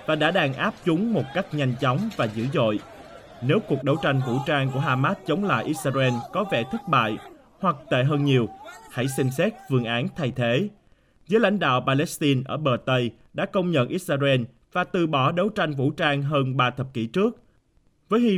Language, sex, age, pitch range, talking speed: Vietnamese, male, 20-39, 130-170 Hz, 205 wpm